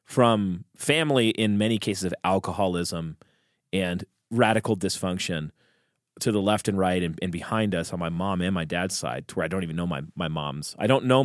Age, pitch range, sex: 30-49, 95-120 Hz, male